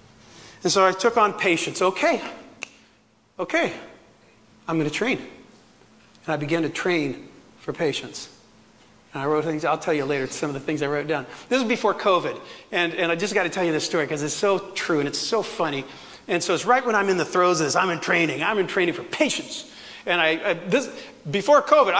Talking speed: 220 wpm